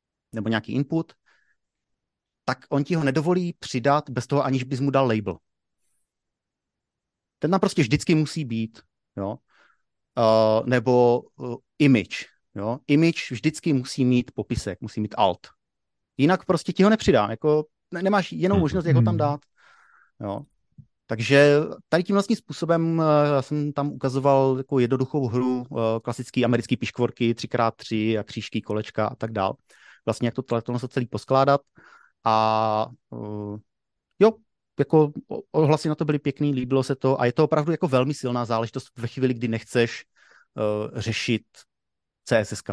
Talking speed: 145 wpm